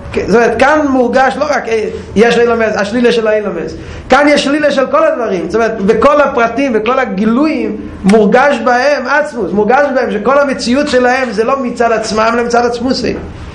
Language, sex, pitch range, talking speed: Hebrew, male, 200-245 Hz, 165 wpm